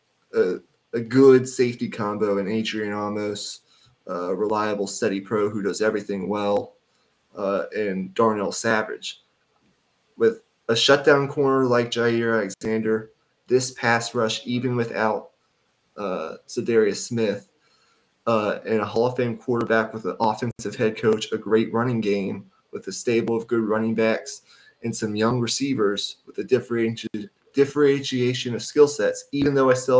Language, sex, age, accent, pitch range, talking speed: English, male, 20-39, American, 110-125 Hz, 150 wpm